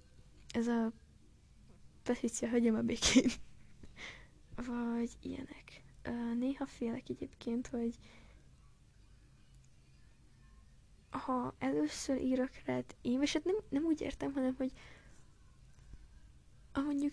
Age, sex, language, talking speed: 10-29, female, Hungarian, 95 wpm